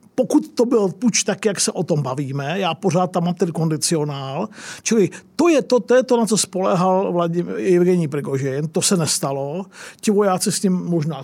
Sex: male